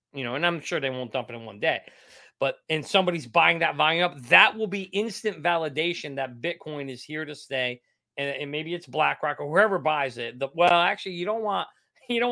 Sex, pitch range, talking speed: male, 135-195 Hz, 230 wpm